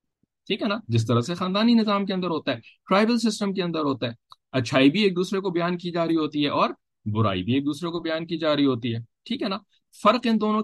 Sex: male